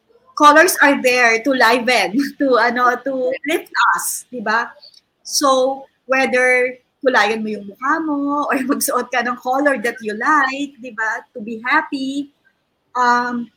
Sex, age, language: female, 20-39, English